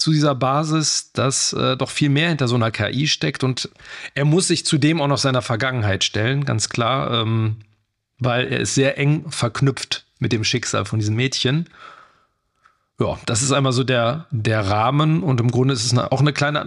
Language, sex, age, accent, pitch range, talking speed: German, male, 40-59, German, 115-140 Hz, 195 wpm